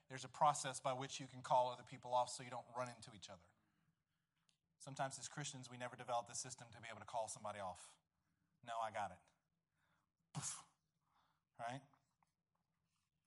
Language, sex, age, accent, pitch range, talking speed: English, male, 20-39, American, 125-155 Hz, 170 wpm